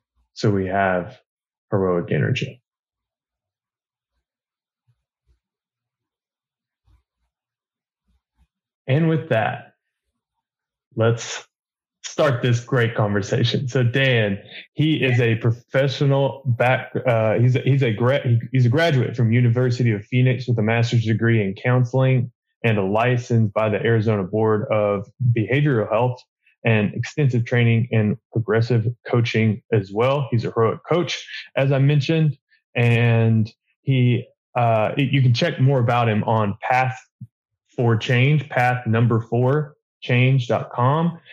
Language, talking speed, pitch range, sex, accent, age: English, 115 wpm, 110-130 Hz, male, American, 20-39